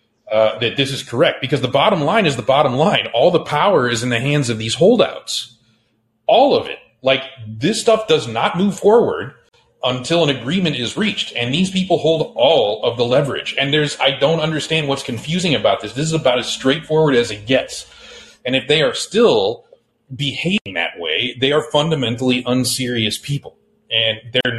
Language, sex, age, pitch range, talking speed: English, male, 30-49, 110-140 Hz, 190 wpm